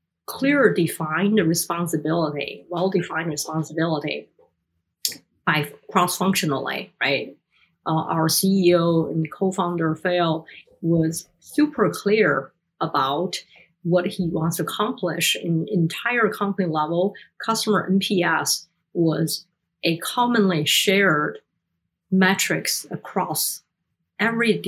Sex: female